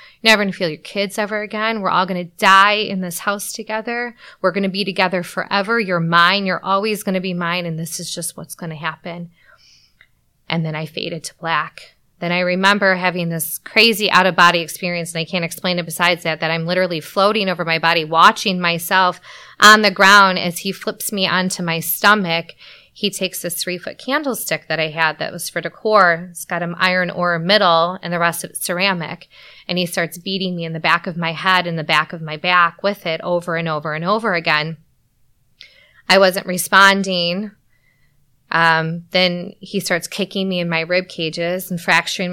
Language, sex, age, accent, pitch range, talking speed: English, female, 20-39, American, 165-195 Hz, 205 wpm